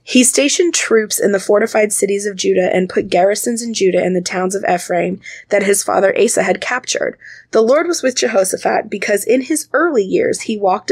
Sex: female